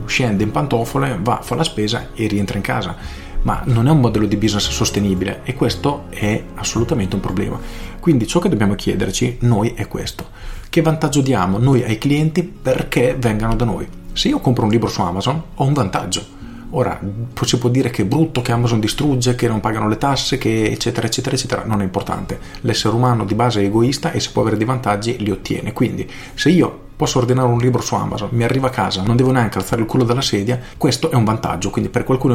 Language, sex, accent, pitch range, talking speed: Italian, male, native, 100-130 Hz, 215 wpm